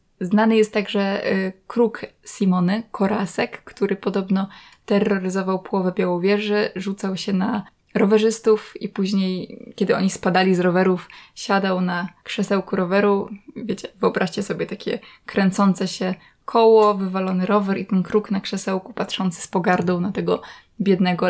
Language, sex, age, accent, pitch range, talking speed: Polish, female, 20-39, native, 190-220 Hz, 130 wpm